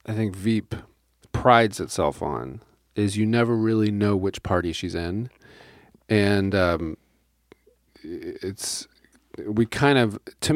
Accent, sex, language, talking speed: American, male, English, 125 wpm